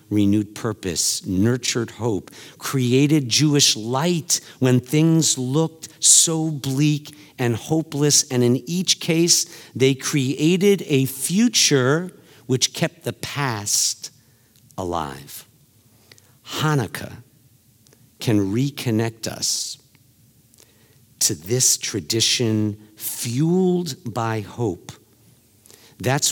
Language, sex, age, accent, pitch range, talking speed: English, male, 50-69, American, 110-135 Hz, 85 wpm